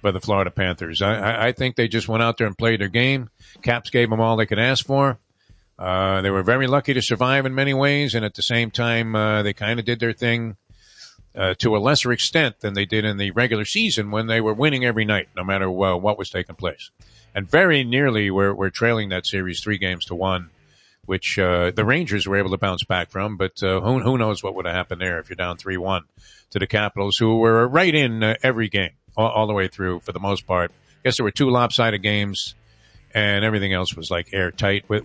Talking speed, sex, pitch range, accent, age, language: 240 wpm, male, 95-120 Hz, American, 50-69, English